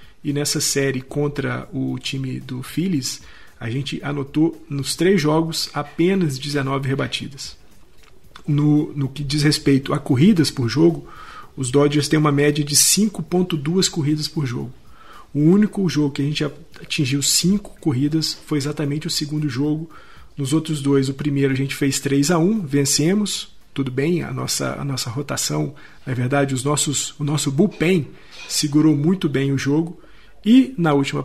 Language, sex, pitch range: Portuguese, male, 140-160 Hz